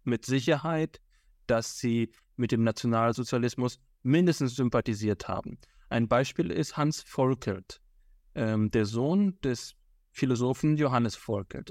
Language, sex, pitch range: German, male, 120-155 Hz